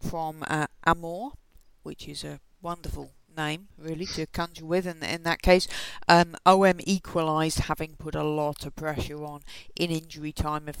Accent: British